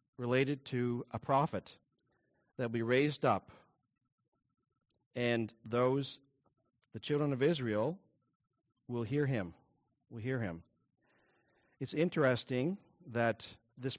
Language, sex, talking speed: English, male, 105 wpm